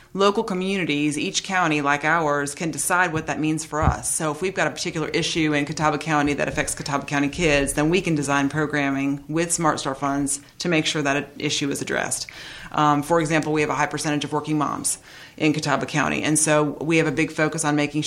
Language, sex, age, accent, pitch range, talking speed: English, female, 30-49, American, 145-165 Hz, 225 wpm